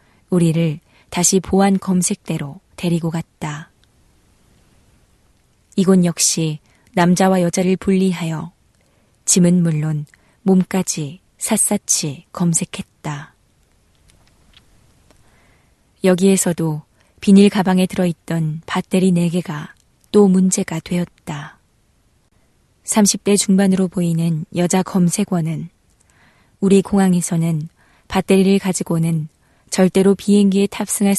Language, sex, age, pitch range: Korean, female, 20-39, 160-190 Hz